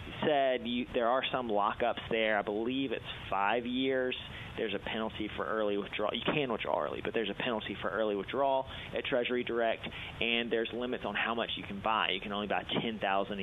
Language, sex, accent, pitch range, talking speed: English, male, American, 105-125 Hz, 205 wpm